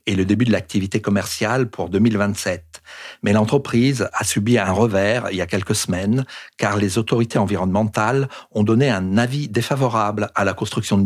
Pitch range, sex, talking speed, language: 95-115 Hz, male, 175 wpm, French